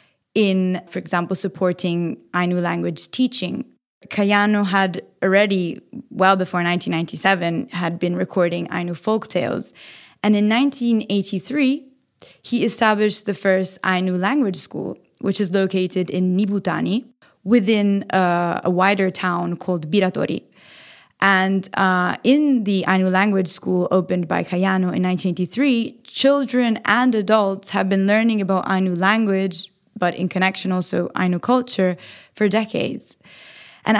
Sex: female